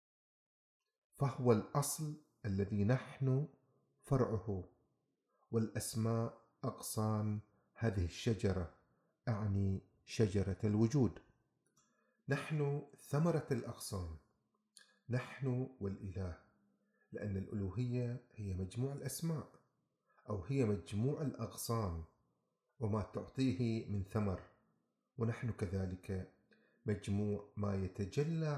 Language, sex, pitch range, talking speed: Arabic, male, 100-130 Hz, 75 wpm